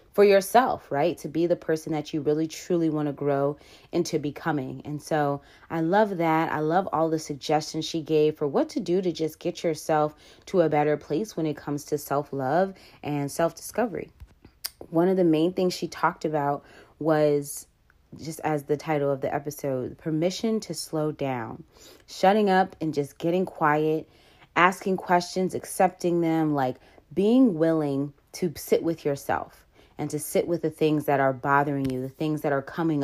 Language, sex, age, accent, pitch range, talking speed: English, female, 30-49, American, 150-180 Hz, 180 wpm